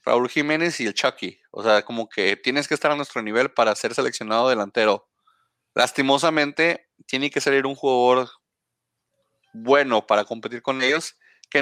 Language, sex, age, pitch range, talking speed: Spanish, male, 30-49, 115-140 Hz, 160 wpm